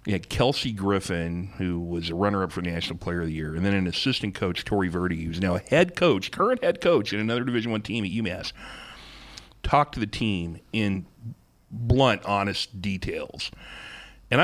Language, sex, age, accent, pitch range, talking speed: English, male, 40-59, American, 95-125 Hz, 185 wpm